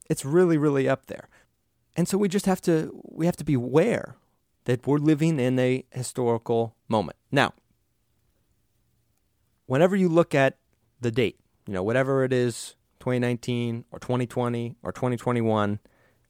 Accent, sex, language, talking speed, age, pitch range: American, male, English, 145 wpm, 30-49, 115-150 Hz